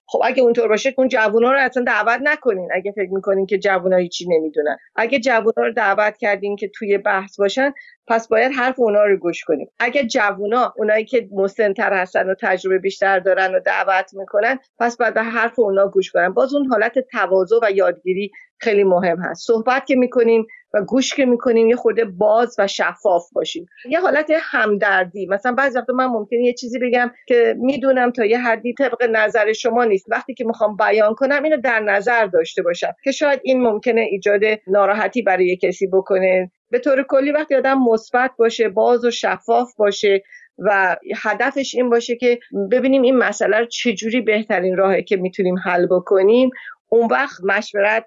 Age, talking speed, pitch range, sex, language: 40-59, 180 wpm, 200-250 Hz, female, Persian